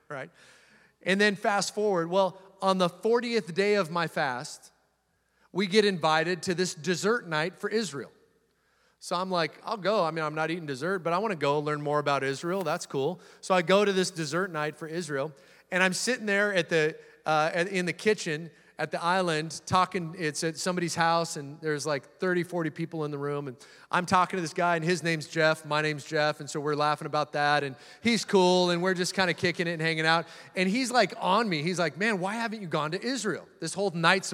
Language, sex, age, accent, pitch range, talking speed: English, male, 30-49, American, 155-190 Hz, 225 wpm